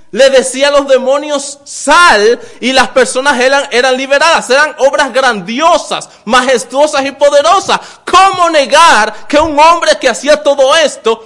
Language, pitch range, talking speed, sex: English, 200-280 Hz, 145 wpm, male